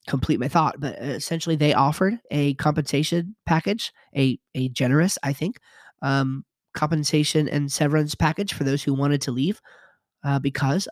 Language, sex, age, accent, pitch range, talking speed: English, male, 30-49, American, 135-160 Hz, 155 wpm